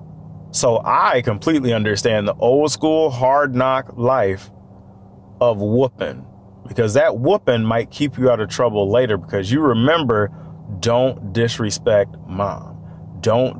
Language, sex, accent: English, male, American